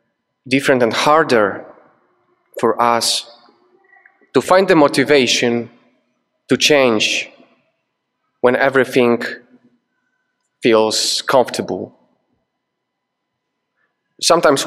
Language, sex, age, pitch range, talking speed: English, male, 30-49, 115-175 Hz, 65 wpm